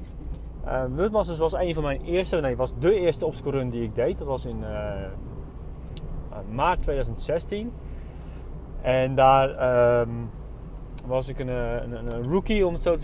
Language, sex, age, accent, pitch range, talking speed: Dutch, male, 30-49, Dutch, 110-140 Hz, 160 wpm